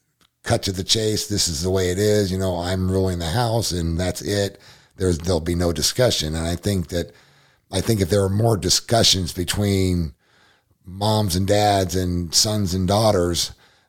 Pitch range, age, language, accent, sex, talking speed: 85-105 Hz, 50-69, English, American, male, 185 wpm